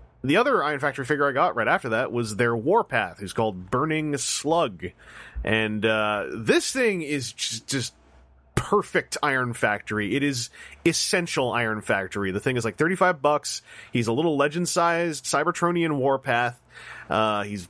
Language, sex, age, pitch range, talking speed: English, male, 30-49, 110-145 Hz, 155 wpm